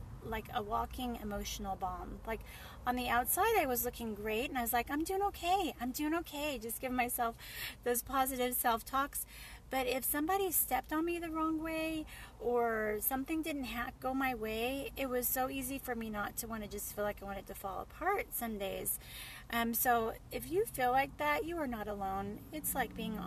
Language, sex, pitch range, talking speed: English, female, 225-295 Hz, 205 wpm